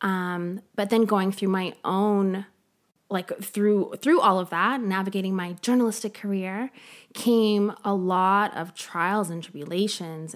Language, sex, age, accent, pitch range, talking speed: English, female, 20-39, American, 185-230 Hz, 140 wpm